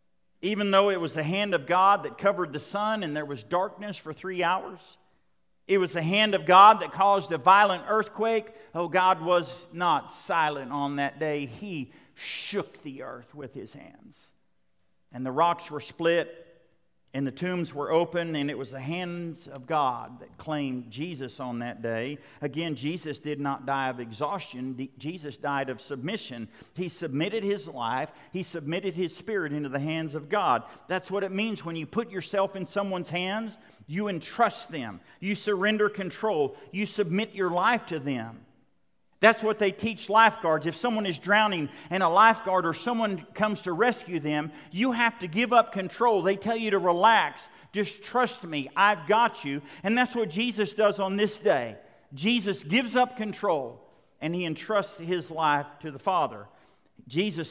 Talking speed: 180 wpm